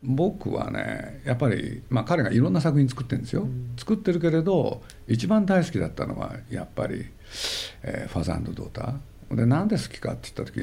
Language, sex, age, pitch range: Japanese, male, 60-79, 105-135 Hz